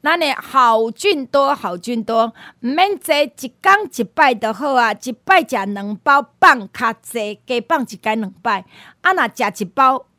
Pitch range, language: 215-285 Hz, Chinese